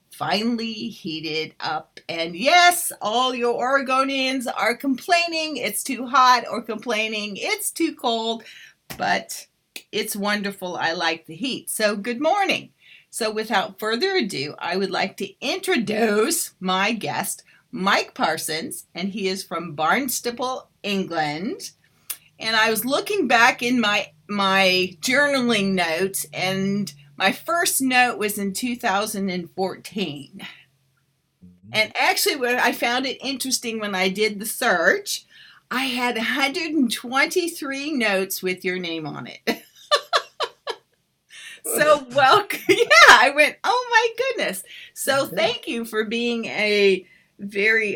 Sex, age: female, 40-59